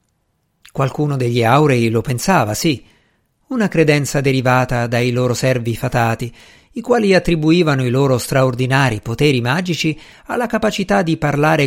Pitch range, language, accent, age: 120-160 Hz, Italian, native, 50-69